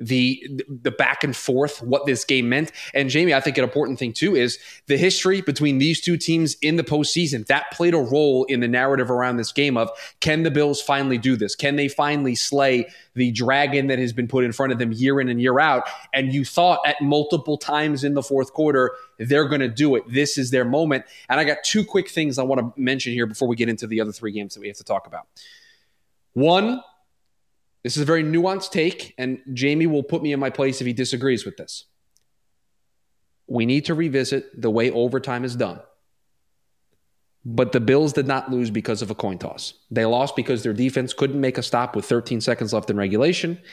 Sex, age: male, 20-39